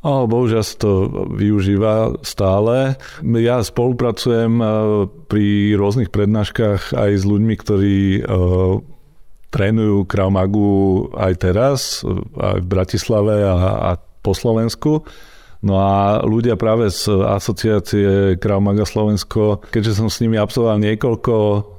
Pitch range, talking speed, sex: 95-110 Hz, 115 wpm, male